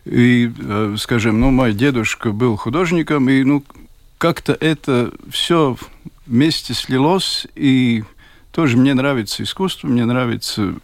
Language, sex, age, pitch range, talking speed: Russian, male, 50-69, 110-150 Hz, 115 wpm